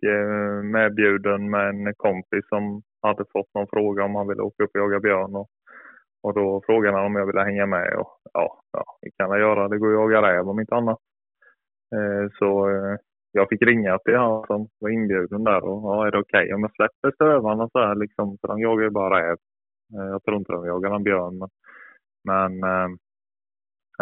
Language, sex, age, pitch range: Swedish, male, 20-39, 95-105 Hz